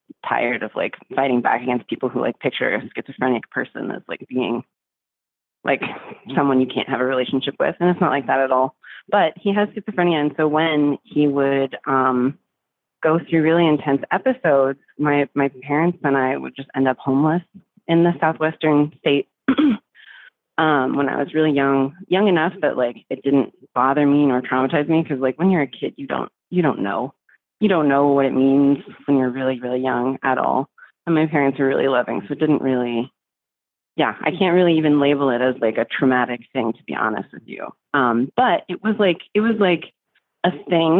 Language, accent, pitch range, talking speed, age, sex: English, American, 130-165 Hz, 200 wpm, 30-49, female